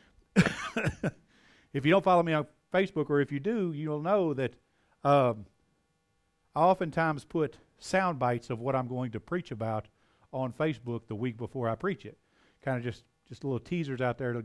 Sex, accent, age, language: male, American, 50-69, English